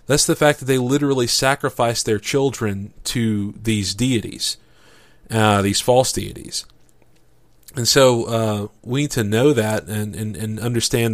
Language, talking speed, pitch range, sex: English, 150 wpm, 110-130 Hz, male